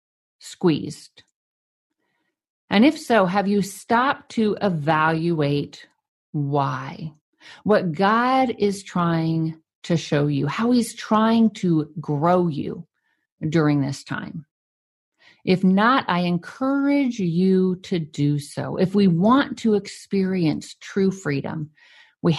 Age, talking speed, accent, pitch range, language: 50-69, 115 wpm, American, 155-210 Hz, English